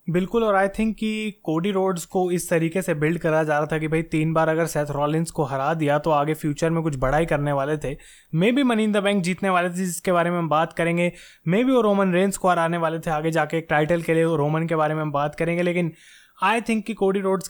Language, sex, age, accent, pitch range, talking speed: Hindi, male, 20-39, native, 155-180 Hz, 270 wpm